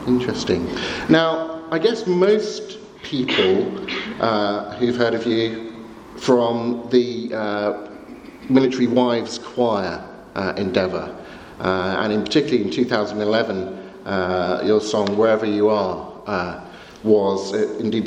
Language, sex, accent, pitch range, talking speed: English, male, British, 105-130 Hz, 115 wpm